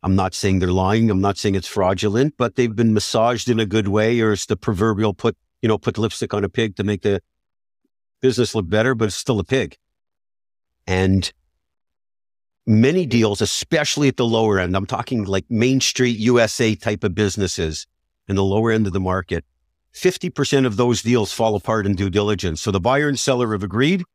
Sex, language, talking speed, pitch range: male, English, 200 wpm, 100-125 Hz